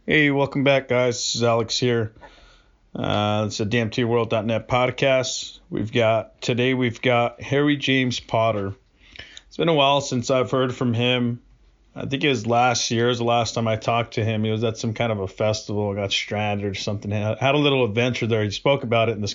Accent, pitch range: American, 110-130 Hz